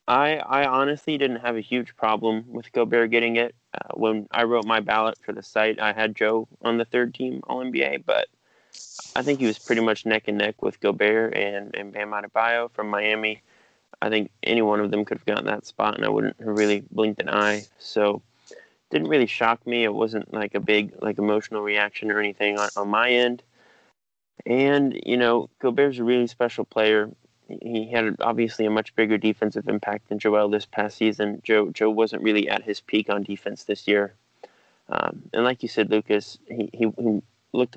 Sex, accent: male, American